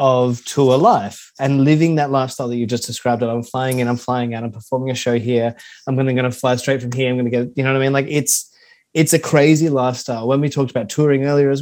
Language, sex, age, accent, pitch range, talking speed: English, male, 20-39, Australian, 120-145 Hz, 265 wpm